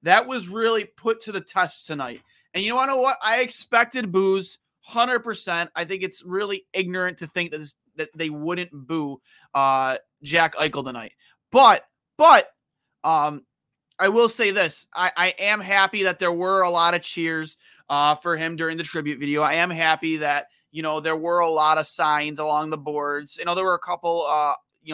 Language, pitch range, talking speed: English, 150-185 Hz, 200 wpm